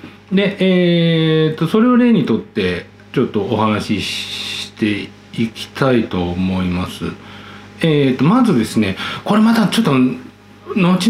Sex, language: male, Japanese